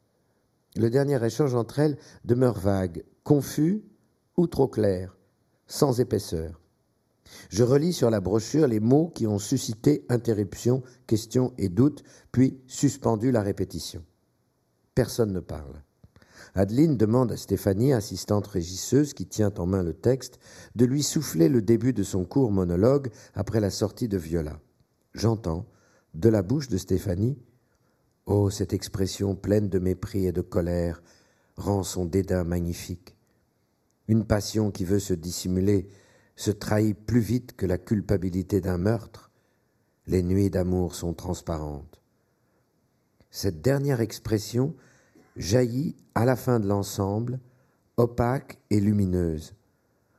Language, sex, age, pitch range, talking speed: French, male, 50-69, 95-125 Hz, 135 wpm